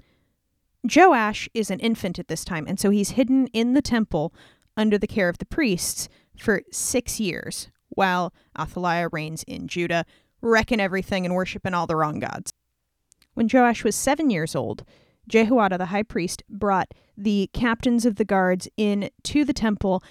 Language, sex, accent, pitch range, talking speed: English, female, American, 185-230 Hz, 165 wpm